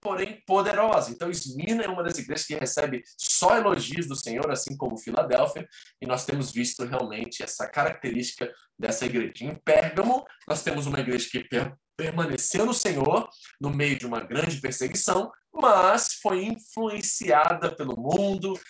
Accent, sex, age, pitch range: Brazilian, male, 20-39, 125-170 Hz